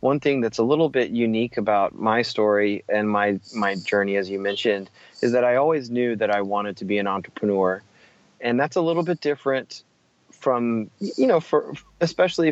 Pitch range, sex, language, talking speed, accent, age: 110-140 Hz, male, English, 190 wpm, American, 30-49